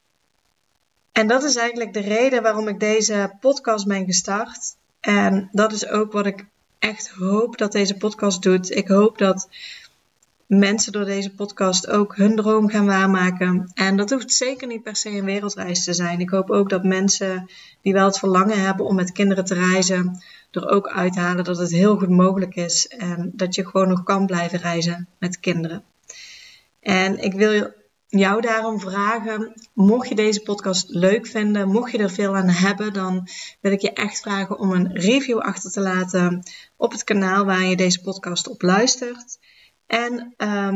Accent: Dutch